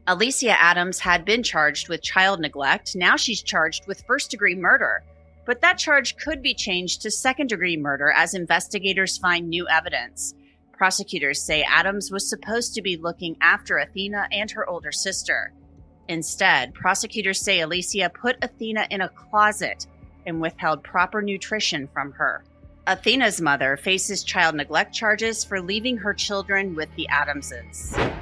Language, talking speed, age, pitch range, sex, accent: English, 155 wpm, 30-49, 170-220 Hz, female, American